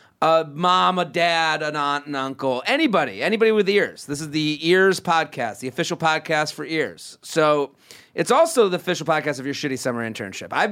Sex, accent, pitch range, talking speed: male, American, 140-185 Hz, 195 wpm